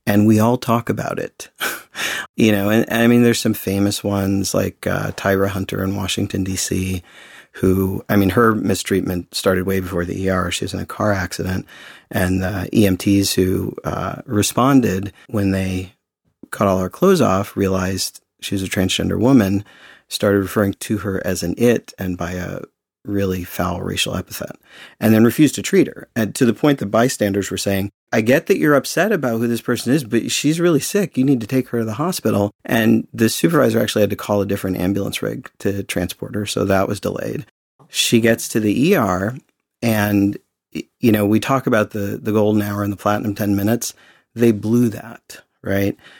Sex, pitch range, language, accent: male, 95-110 Hz, English, American